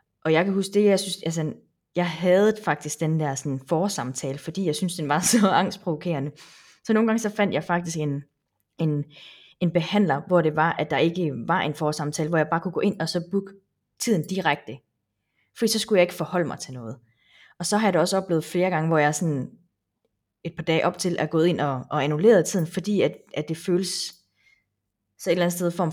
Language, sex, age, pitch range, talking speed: Danish, female, 20-39, 145-180 Hz, 220 wpm